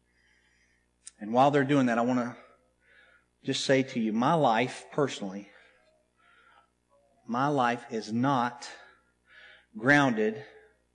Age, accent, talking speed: 40-59, American, 110 wpm